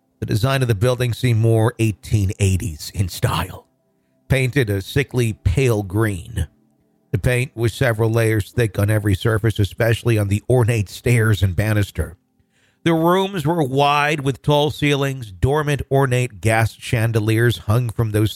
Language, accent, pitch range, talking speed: English, American, 100-130 Hz, 145 wpm